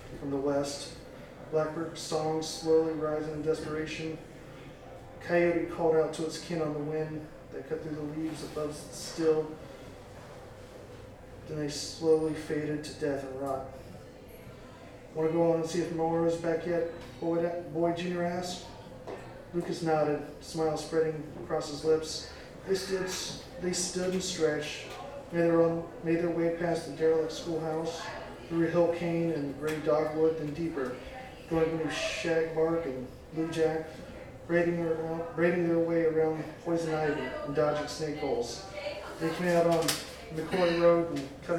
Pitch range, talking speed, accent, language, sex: 150-165 Hz, 155 wpm, American, English, male